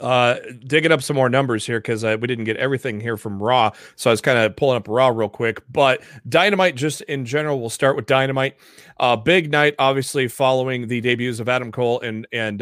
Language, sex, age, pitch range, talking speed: English, male, 30-49, 115-135 Hz, 220 wpm